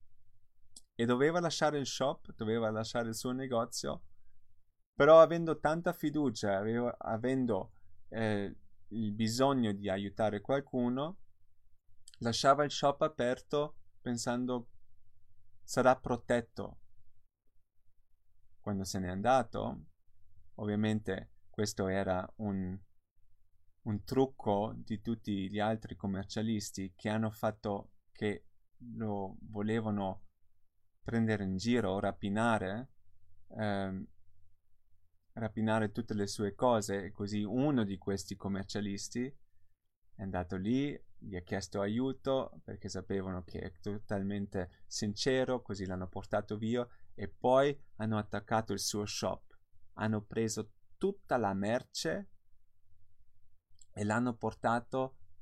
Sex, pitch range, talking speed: male, 95-115 Hz, 105 wpm